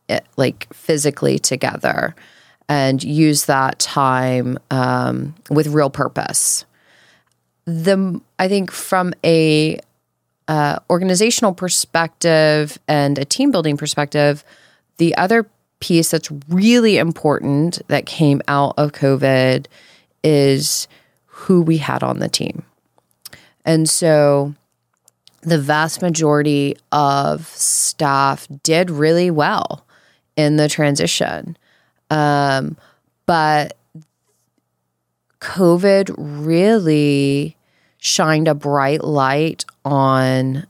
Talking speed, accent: 95 wpm, American